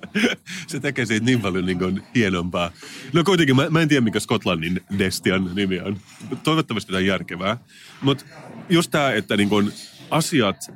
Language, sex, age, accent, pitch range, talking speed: Finnish, male, 30-49, native, 95-135 Hz, 150 wpm